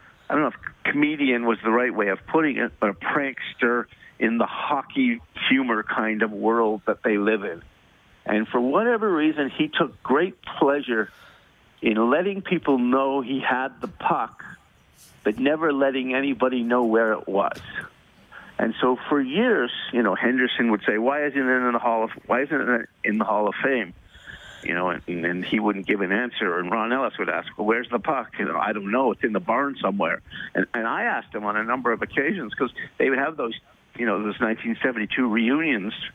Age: 50-69